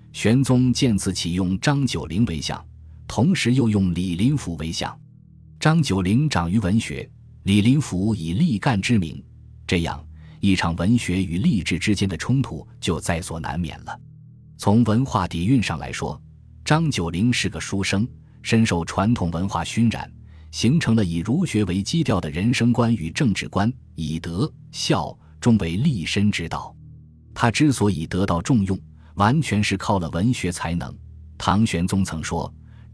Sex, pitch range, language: male, 85-115 Hz, Chinese